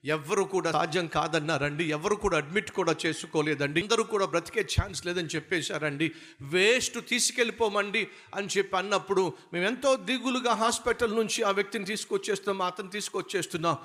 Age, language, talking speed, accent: 50-69, Telugu, 130 wpm, native